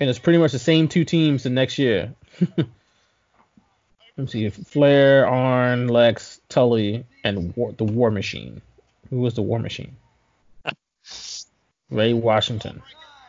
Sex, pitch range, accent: male, 120-165 Hz, American